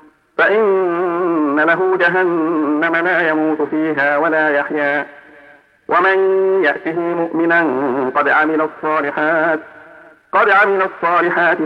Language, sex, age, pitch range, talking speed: Arabic, male, 50-69, 155-175 Hz, 85 wpm